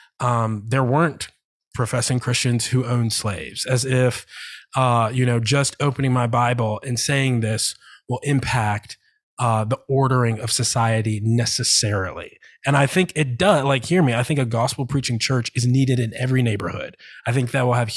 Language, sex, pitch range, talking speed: English, male, 115-140 Hz, 170 wpm